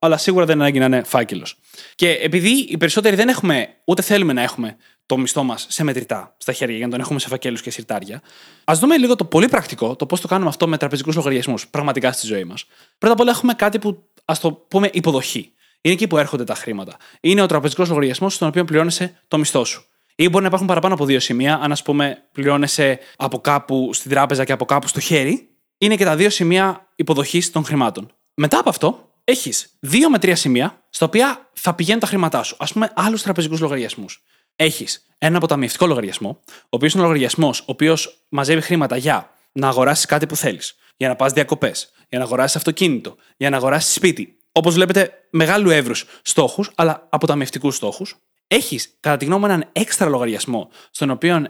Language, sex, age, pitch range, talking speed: Greek, male, 20-39, 140-180 Hz, 205 wpm